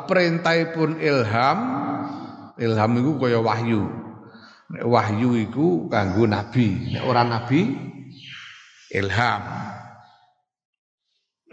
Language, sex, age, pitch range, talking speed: Indonesian, male, 50-69, 105-135 Hz, 90 wpm